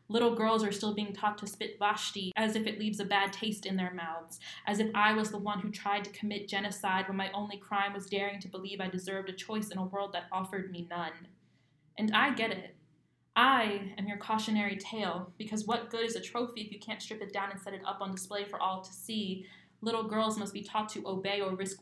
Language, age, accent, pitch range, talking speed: English, 20-39, American, 190-215 Hz, 245 wpm